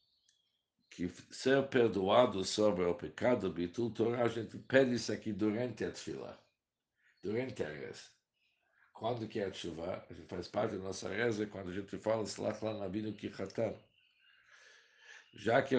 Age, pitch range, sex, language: 60-79, 100-125 Hz, male, Portuguese